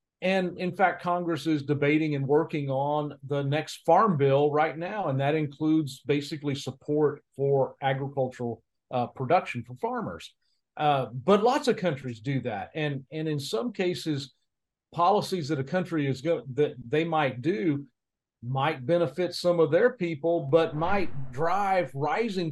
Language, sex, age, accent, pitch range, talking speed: English, male, 40-59, American, 135-170 Hz, 150 wpm